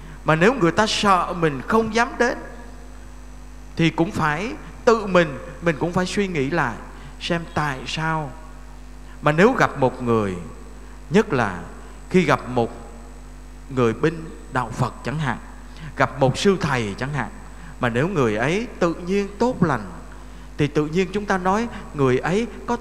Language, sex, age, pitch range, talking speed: Vietnamese, male, 20-39, 145-220 Hz, 165 wpm